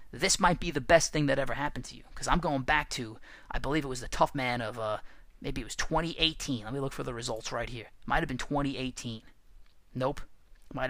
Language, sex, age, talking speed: English, male, 30-49, 235 wpm